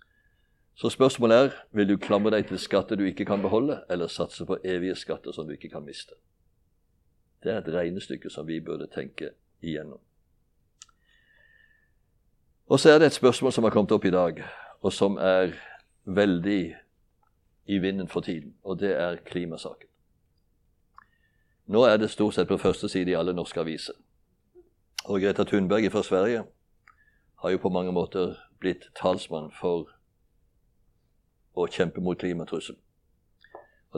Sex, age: male, 60-79